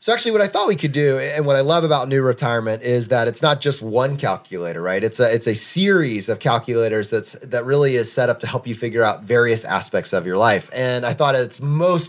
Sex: male